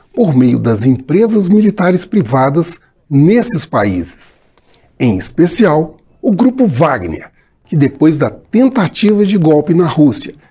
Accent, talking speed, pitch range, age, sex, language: Brazilian, 120 wpm, 130-205 Hz, 60-79, male, Portuguese